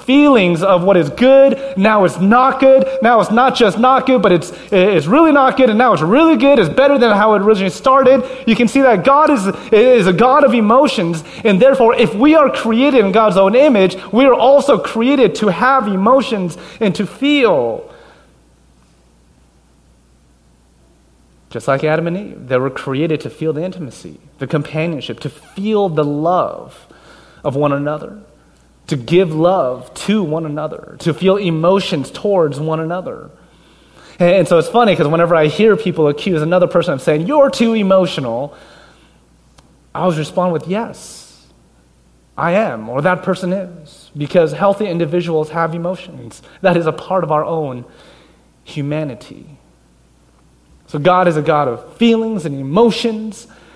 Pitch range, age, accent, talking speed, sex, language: 150-230 Hz, 30-49, American, 165 wpm, male, English